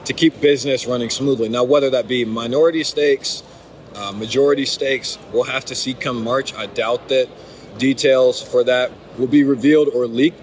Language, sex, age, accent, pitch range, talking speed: English, male, 30-49, American, 120-160 Hz, 180 wpm